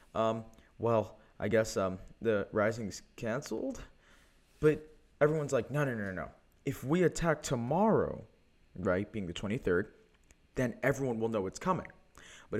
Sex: male